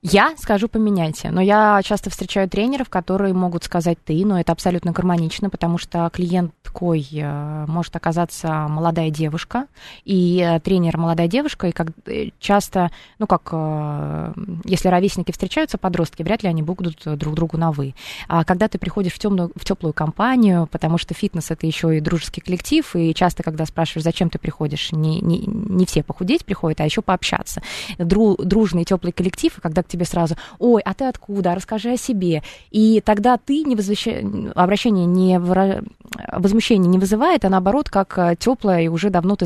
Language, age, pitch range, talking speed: Russian, 20-39, 165-205 Hz, 165 wpm